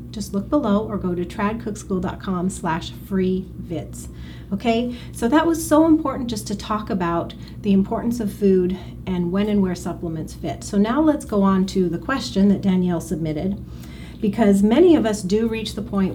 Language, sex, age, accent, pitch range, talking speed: English, female, 30-49, American, 175-215 Hz, 180 wpm